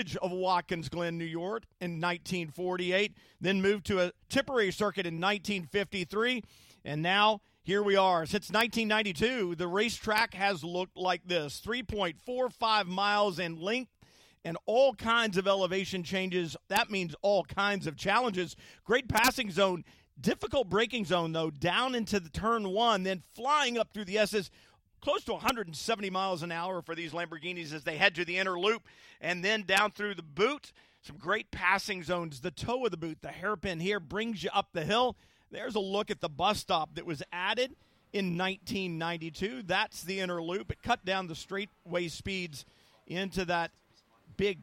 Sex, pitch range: male, 170-210 Hz